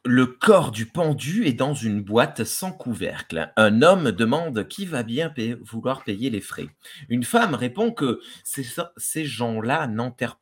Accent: French